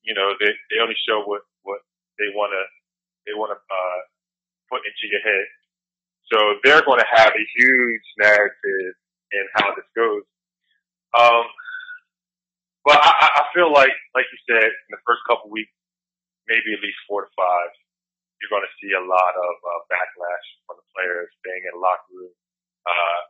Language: English